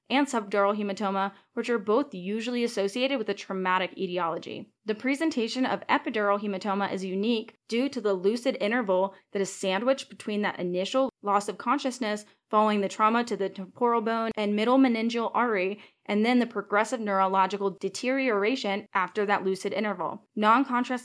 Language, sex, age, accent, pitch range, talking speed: English, female, 10-29, American, 195-235 Hz, 155 wpm